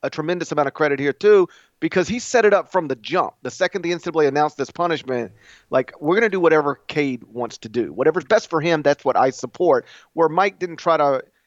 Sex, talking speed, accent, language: male, 225 wpm, American, English